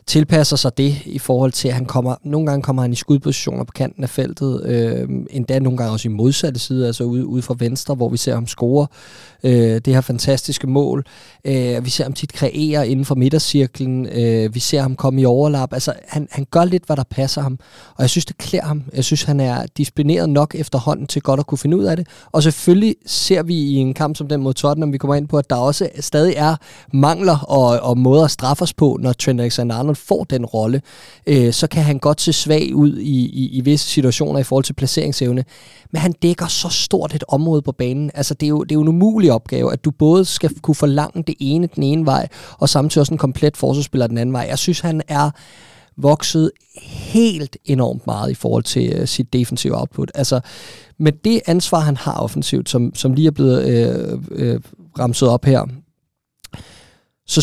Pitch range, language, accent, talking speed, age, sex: 130-155 Hz, Danish, native, 215 wpm, 20-39, male